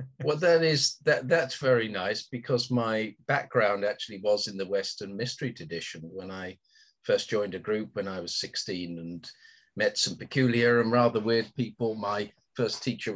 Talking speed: 170 wpm